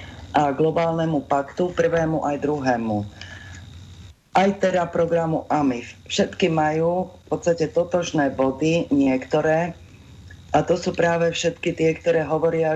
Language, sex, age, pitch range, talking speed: Slovak, female, 30-49, 130-170 Hz, 120 wpm